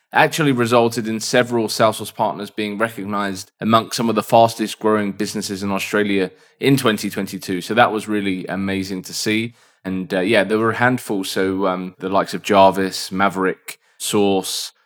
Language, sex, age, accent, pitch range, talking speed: English, male, 20-39, British, 100-115 Hz, 165 wpm